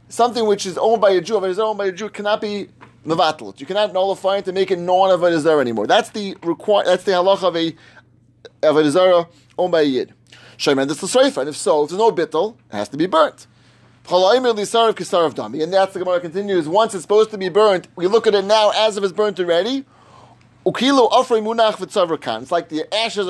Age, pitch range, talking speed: 30-49, 170-230 Hz, 215 wpm